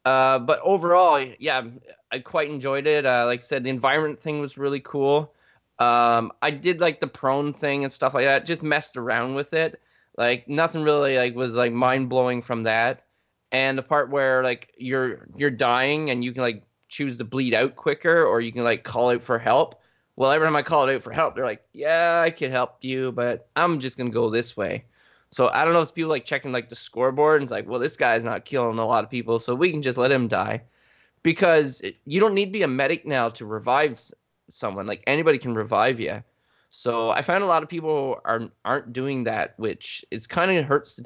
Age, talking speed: 20-39, 230 wpm